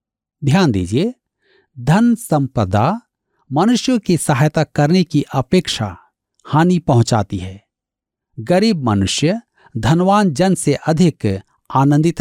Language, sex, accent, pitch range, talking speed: Hindi, male, native, 115-185 Hz, 100 wpm